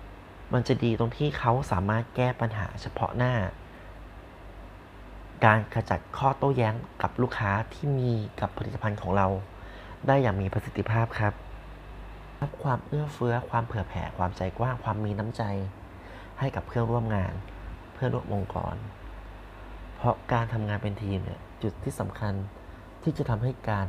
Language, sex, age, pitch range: Thai, male, 30-49, 95-120 Hz